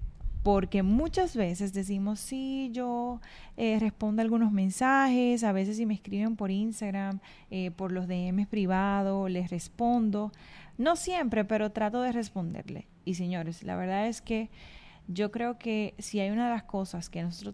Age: 20-39